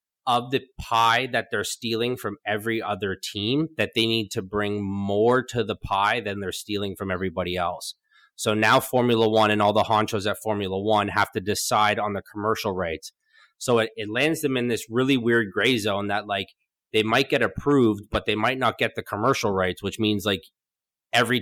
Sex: male